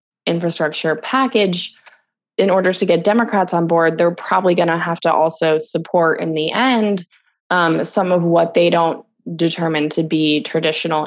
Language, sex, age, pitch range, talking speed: English, female, 20-39, 160-210 Hz, 155 wpm